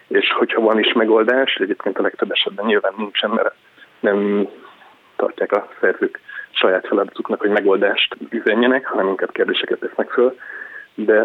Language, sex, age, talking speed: Hungarian, male, 20-39, 145 wpm